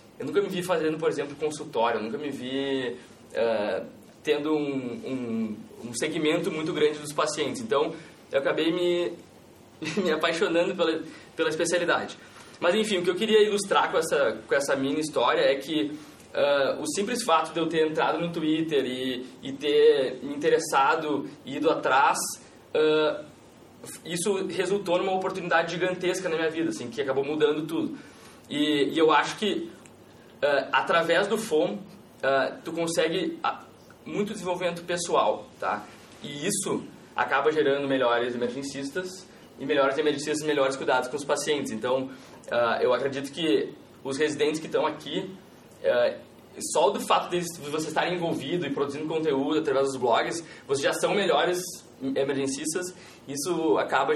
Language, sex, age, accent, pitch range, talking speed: English, male, 20-39, Brazilian, 140-180 Hz, 155 wpm